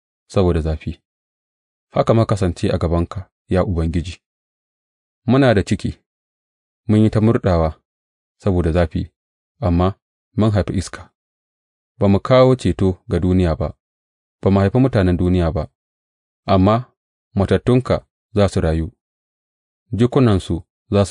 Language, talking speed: English, 100 wpm